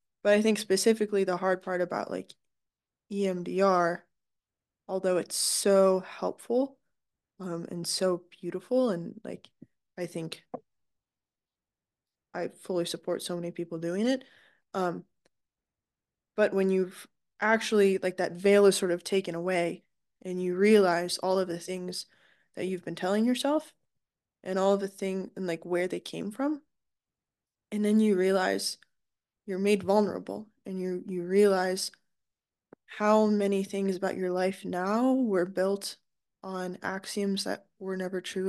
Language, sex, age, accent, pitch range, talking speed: English, female, 10-29, American, 180-205 Hz, 145 wpm